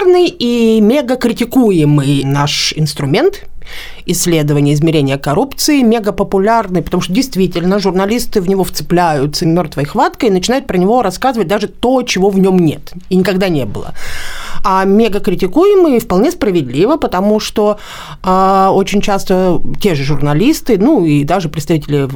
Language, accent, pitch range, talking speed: Russian, native, 180-255 Hz, 130 wpm